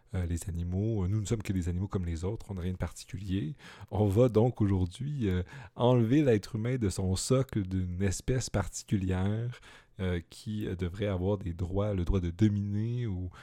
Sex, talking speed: male, 190 wpm